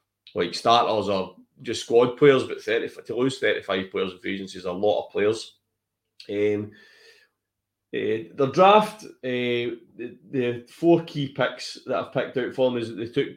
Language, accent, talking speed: English, British, 180 wpm